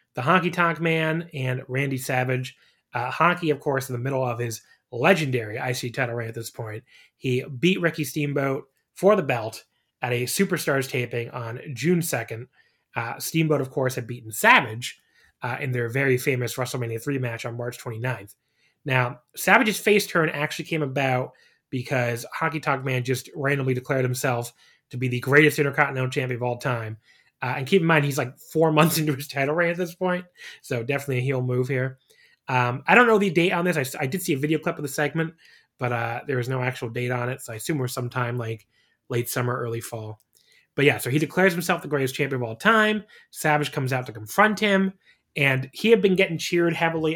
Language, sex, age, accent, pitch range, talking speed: English, male, 30-49, American, 125-160 Hz, 205 wpm